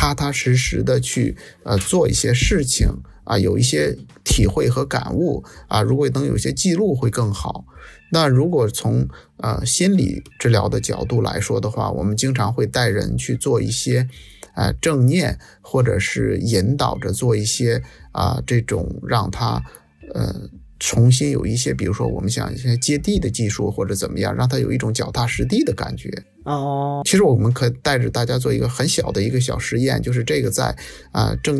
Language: Chinese